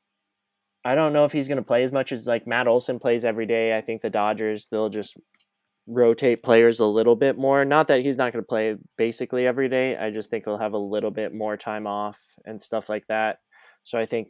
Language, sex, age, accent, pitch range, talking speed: English, male, 20-39, American, 105-115 Hz, 240 wpm